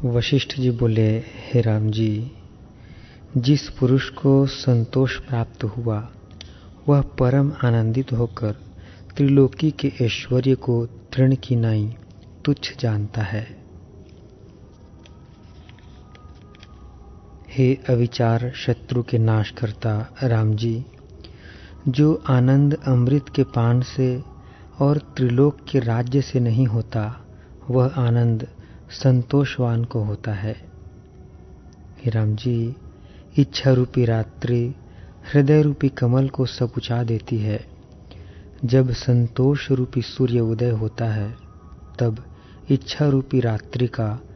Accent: native